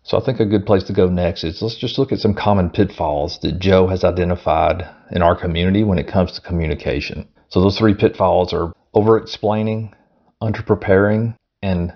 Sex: male